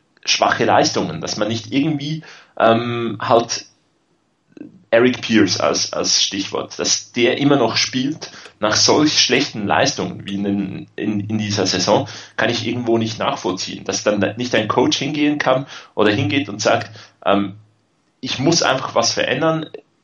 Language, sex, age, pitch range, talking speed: German, male, 30-49, 105-130 Hz, 150 wpm